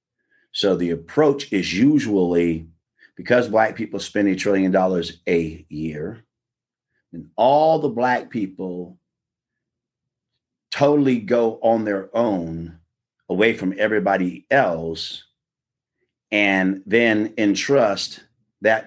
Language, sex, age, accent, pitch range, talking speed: English, male, 40-59, American, 95-125 Hz, 100 wpm